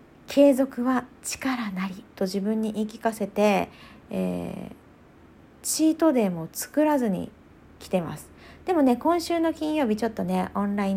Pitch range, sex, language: 195-275 Hz, female, Japanese